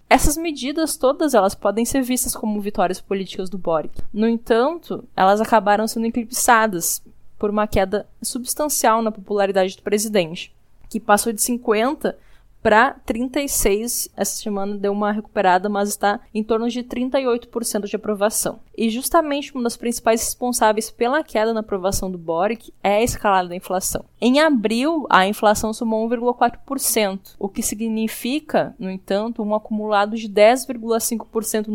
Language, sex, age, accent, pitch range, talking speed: Portuguese, female, 10-29, Brazilian, 200-240 Hz, 145 wpm